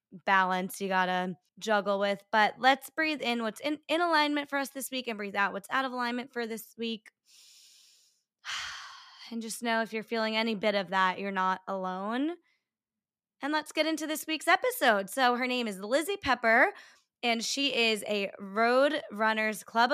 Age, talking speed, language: 20-39, 180 wpm, English